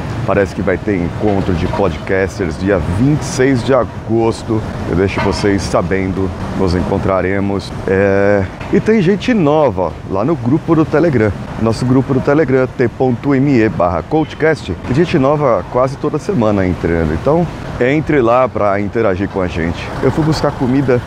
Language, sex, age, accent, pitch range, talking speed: Portuguese, male, 30-49, Brazilian, 95-135 Hz, 150 wpm